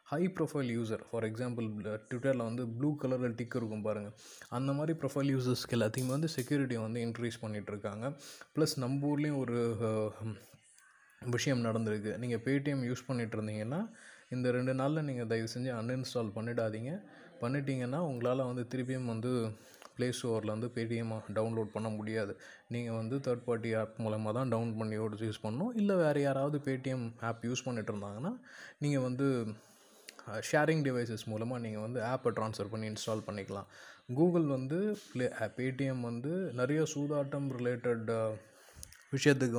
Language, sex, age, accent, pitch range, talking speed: Tamil, male, 20-39, native, 110-135 Hz, 140 wpm